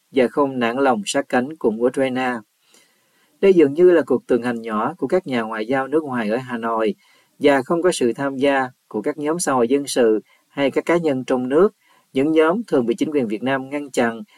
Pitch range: 125-155 Hz